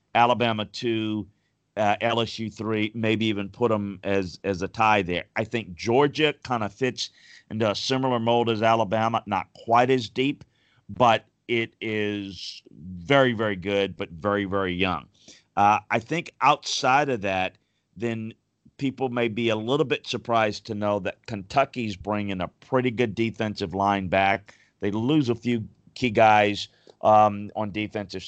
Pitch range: 100-120 Hz